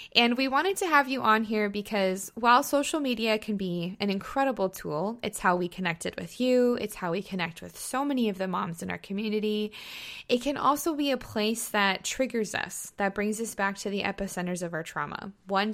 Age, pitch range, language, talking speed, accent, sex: 20-39, 190-235 Hz, English, 215 wpm, American, female